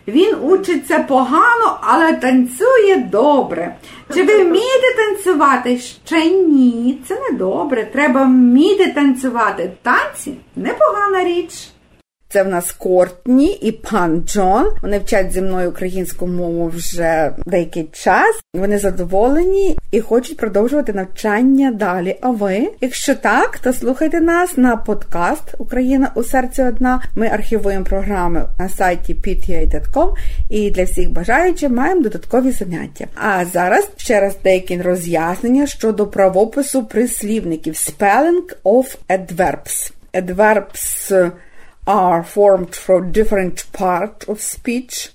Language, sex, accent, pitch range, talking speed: Ukrainian, female, native, 190-285 Hz, 120 wpm